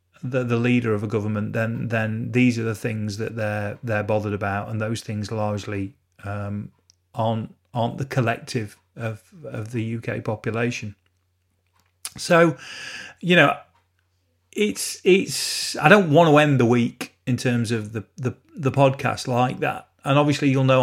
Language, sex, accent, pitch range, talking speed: English, male, British, 115-150 Hz, 160 wpm